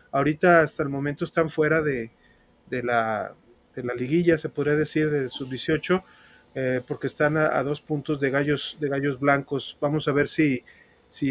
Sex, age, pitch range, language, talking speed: male, 30-49, 135-155 Hz, Spanish, 180 wpm